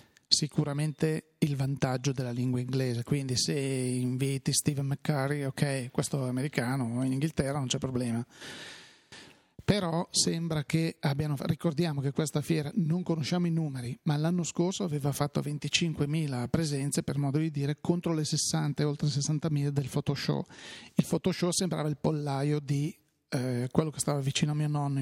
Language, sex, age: Italian, male, 30-49